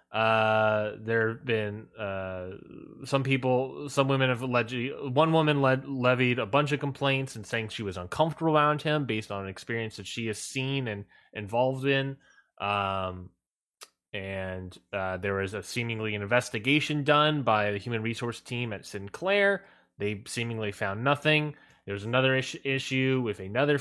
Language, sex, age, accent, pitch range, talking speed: English, male, 20-39, American, 100-130 Hz, 165 wpm